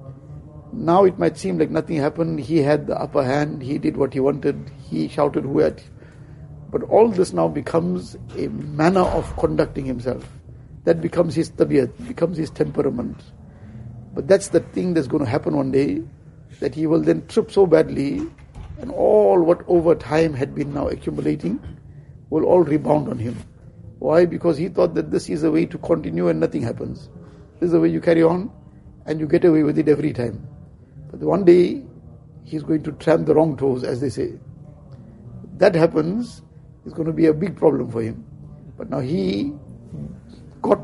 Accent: Indian